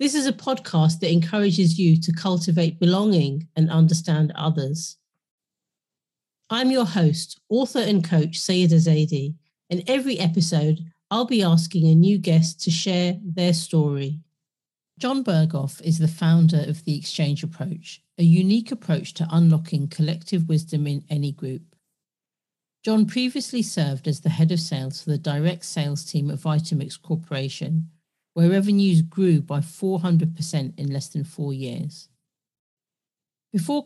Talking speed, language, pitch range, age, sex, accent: 140 wpm, English, 155-180 Hz, 40-59, female, British